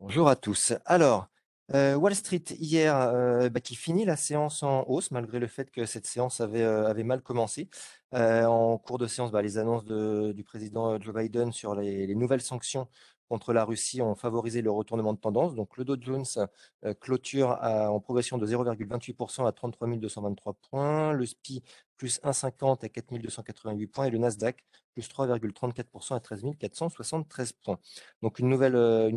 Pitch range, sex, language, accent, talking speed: 105-125 Hz, male, French, French, 175 wpm